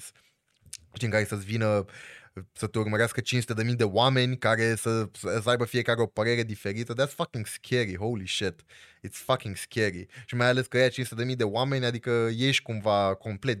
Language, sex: Romanian, male